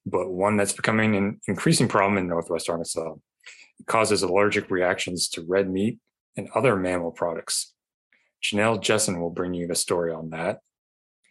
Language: English